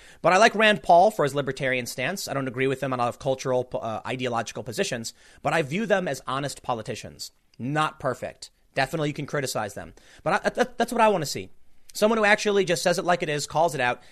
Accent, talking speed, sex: American, 235 wpm, male